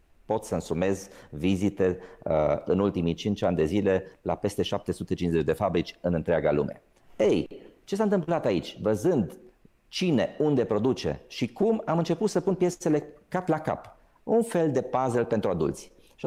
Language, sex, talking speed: Romanian, male, 165 wpm